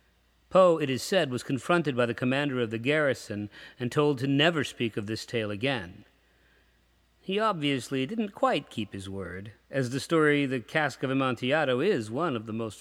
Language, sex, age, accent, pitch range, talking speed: English, male, 50-69, American, 110-160 Hz, 185 wpm